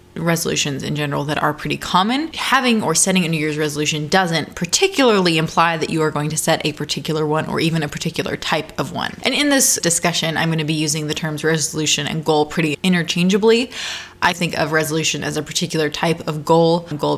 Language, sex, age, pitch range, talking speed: English, female, 20-39, 155-205 Hz, 210 wpm